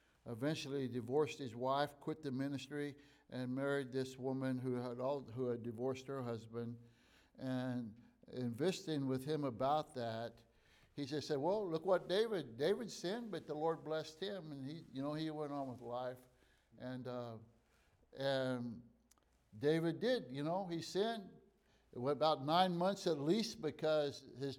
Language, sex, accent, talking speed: English, male, American, 160 wpm